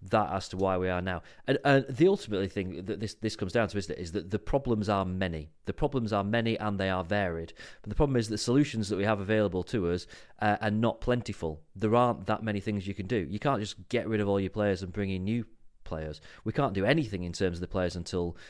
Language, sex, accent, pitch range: English, male, British, 95-110 Hz